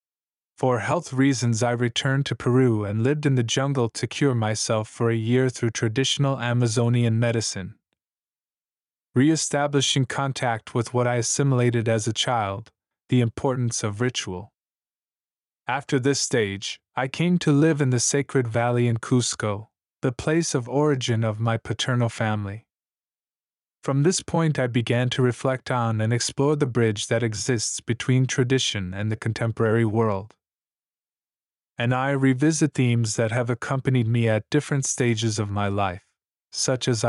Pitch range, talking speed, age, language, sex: 115-135 Hz, 150 wpm, 20-39, English, male